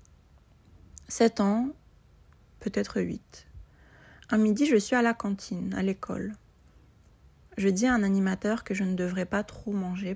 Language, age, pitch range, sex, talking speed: French, 30-49, 185-210 Hz, female, 150 wpm